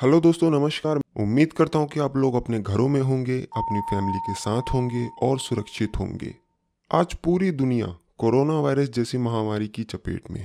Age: 20-39